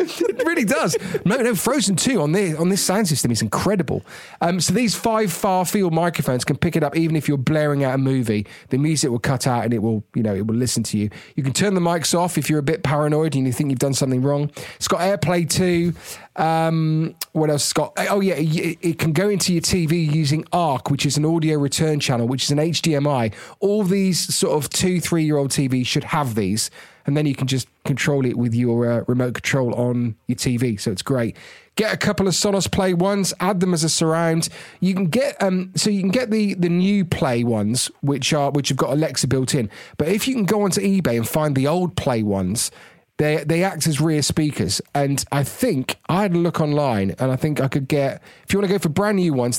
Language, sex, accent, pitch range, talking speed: English, male, British, 130-175 Hz, 235 wpm